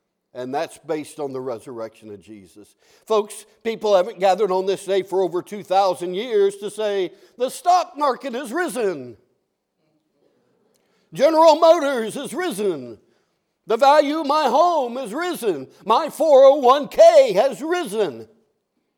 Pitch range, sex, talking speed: 170-255 Hz, male, 130 wpm